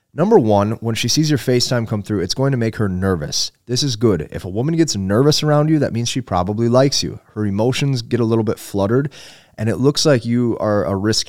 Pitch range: 100-130 Hz